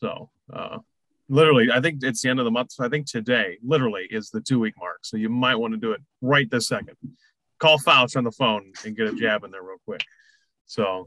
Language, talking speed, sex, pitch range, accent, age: English, 240 wpm, male, 120-155 Hz, American, 20-39